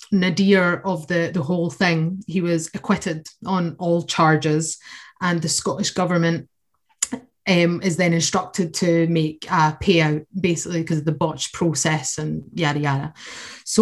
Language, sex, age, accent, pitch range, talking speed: English, female, 30-49, British, 165-190 Hz, 150 wpm